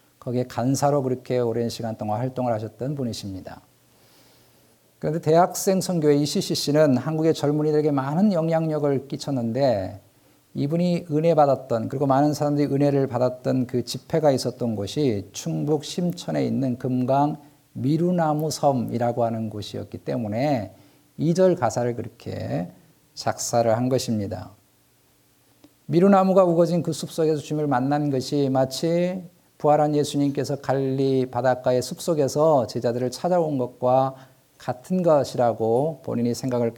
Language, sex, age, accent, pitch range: Korean, male, 50-69, native, 120-155 Hz